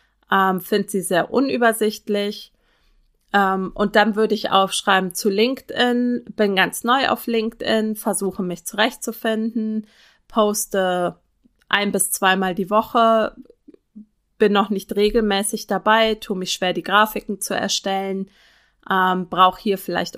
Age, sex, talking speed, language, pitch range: 30-49, female, 120 wpm, German, 190-230 Hz